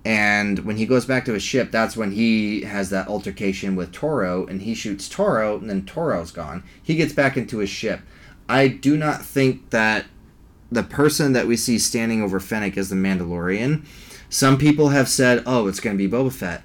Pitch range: 95-125 Hz